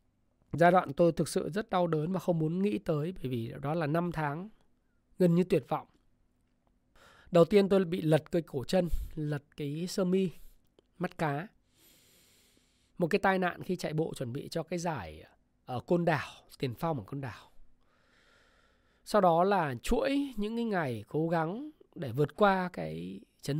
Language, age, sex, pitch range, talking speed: Vietnamese, 20-39, male, 135-190 Hz, 180 wpm